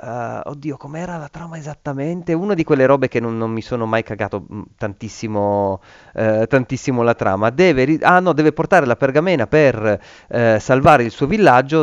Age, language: 30-49, Italian